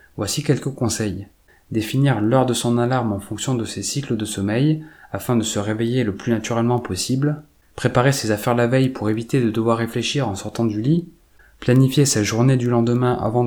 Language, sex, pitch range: French, male, 105-130 Hz